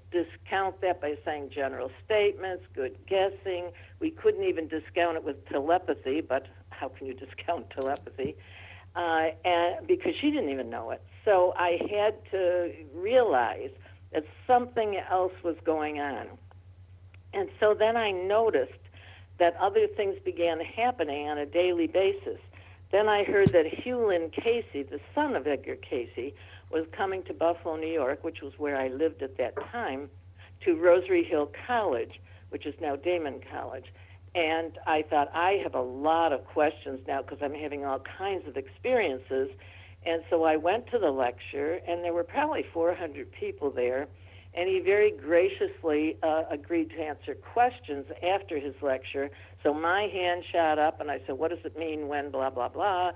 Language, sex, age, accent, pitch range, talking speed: English, female, 60-79, American, 135-185 Hz, 165 wpm